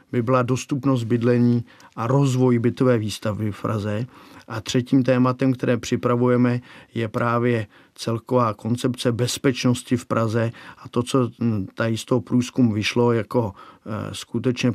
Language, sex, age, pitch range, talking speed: Czech, male, 50-69, 115-135 Hz, 130 wpm